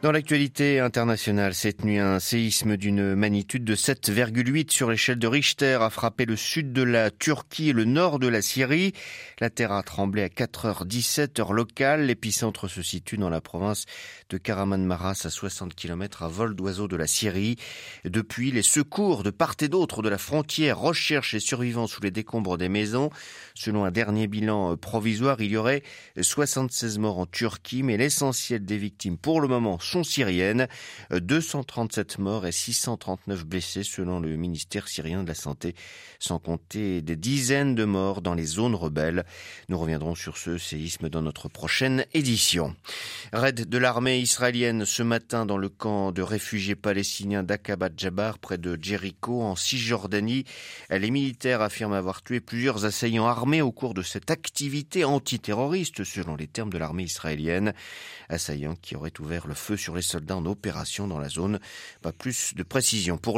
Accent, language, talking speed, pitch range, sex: French, French, 170 wpm, 95-125 Hz, male